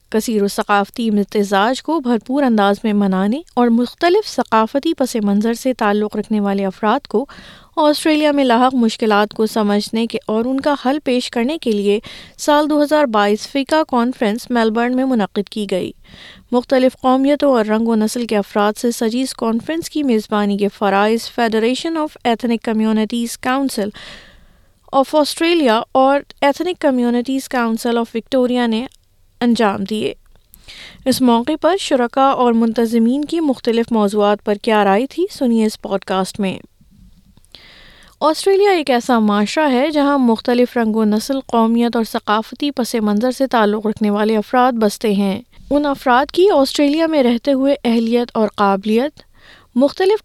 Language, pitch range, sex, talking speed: Urdu, 215-275 Hz, female, 150 wpm